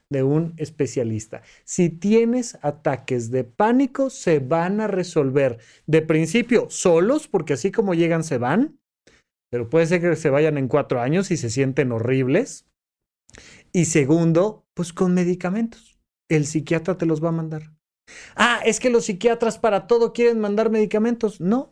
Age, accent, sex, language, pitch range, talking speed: 30-49, Mexican, male, Spanish, 150-210 Hz, 155 wpm